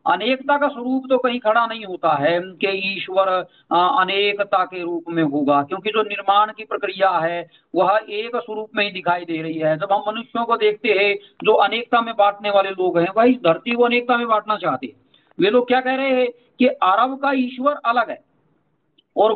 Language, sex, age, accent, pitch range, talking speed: Hindi, male, 40-59, native, 185-255 Hz, 200 wpm